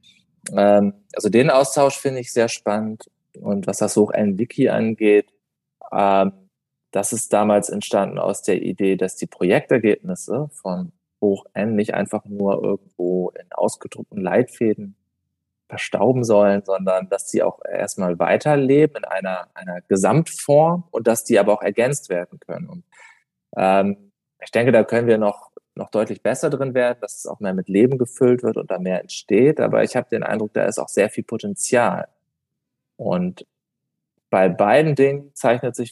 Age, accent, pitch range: 20-39, German, 100-130 Hz